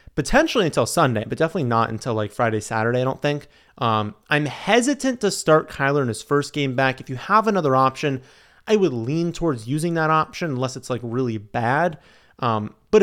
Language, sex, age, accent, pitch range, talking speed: English, male, 30-49, American, 115-150 Hz, 200 wpm